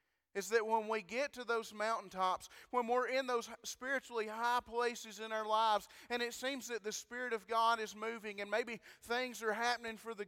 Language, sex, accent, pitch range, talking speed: English, male, American, 200-235 Hz, 205 wpm